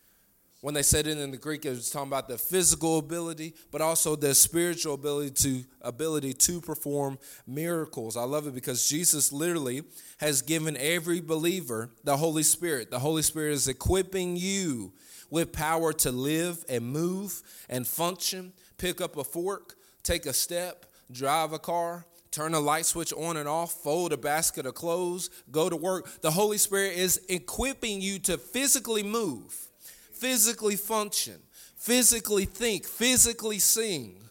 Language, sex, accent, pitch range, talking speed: English, male, American, 155-205 Hz, 160 wpm